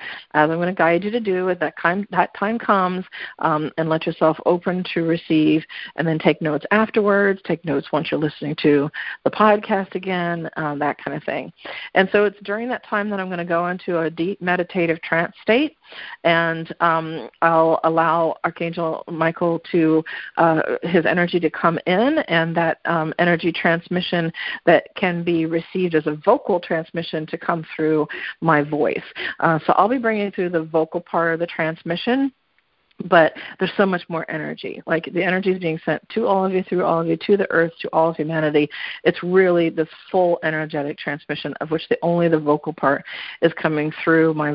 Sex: female